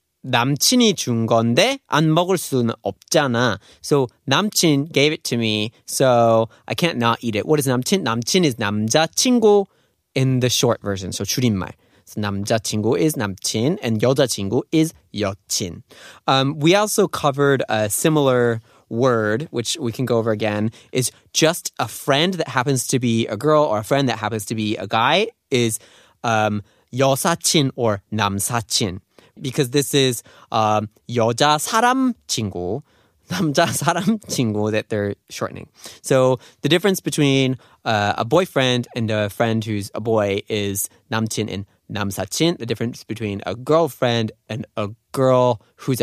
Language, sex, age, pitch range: Korean, male, 20-39, 110-145 Hz